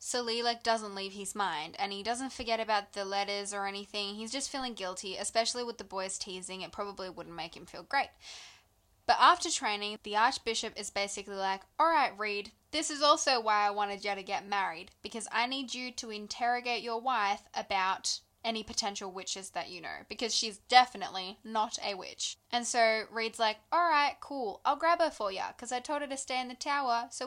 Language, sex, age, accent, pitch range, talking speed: English, female, 10-29, Australian, 205-255 Hz, 205 wpm